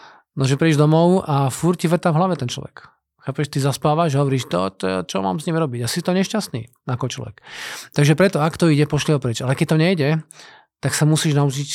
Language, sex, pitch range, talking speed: Slovak, male, 130-160 Hz, 215 wpm